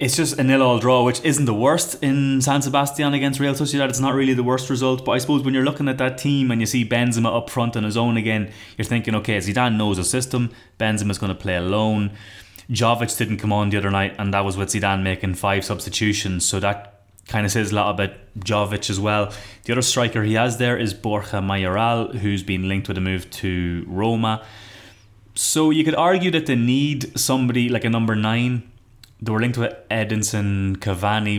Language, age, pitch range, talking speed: English, 20-39, 100-125 Hz, 215 wpm